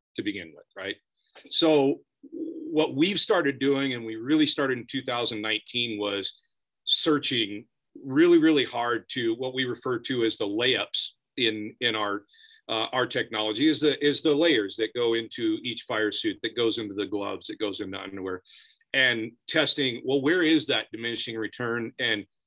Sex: male